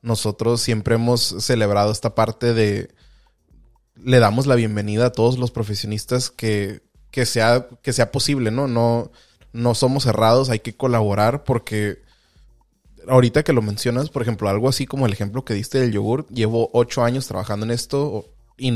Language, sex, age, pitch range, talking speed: Spanish, male, 20-39, 110-130 Hz, 165 wpm